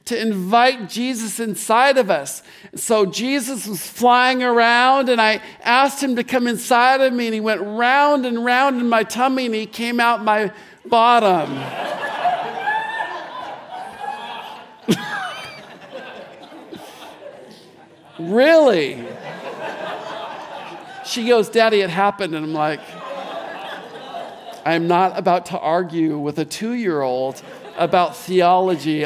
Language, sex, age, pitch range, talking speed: English, male, 50-69, 175-245 Hz, 110 wpm